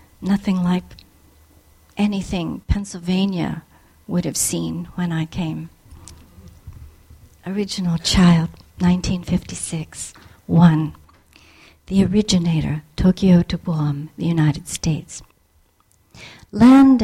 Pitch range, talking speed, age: 145-195 Hz, 80 wpm, 60-79